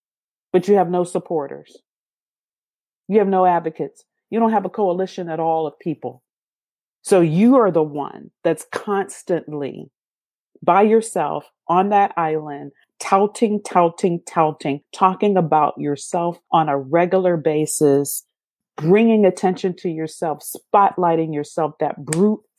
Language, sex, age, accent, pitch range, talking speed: English, female, 40-59, American, 155-200 Hz, 130 wpm